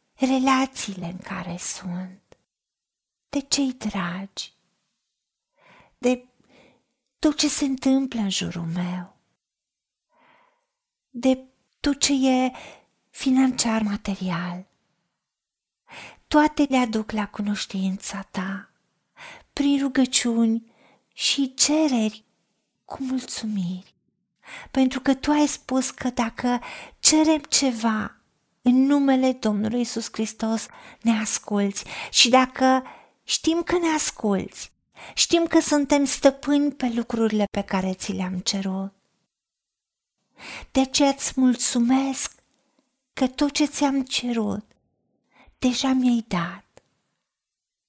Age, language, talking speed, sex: 40-59, Romanian, 100 wpm, female